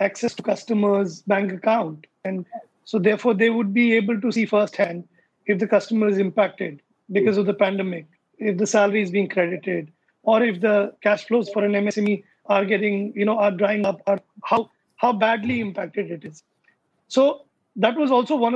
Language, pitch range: English, 200-240 Hz